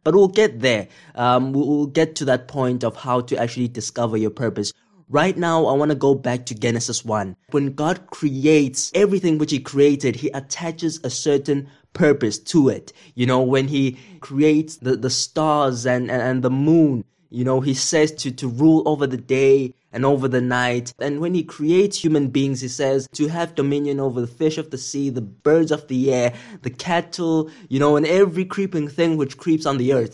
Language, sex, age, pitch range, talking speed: English, male, 20-39, 130-160 Hz, 205 wpm